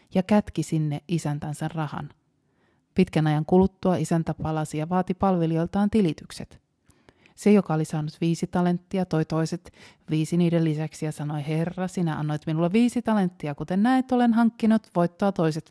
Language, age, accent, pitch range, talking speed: Finnish, 30-49, native, 155-185 Hz, 150 wpm